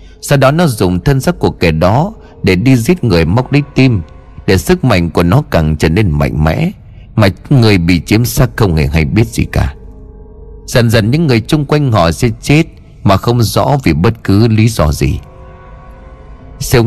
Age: 30-49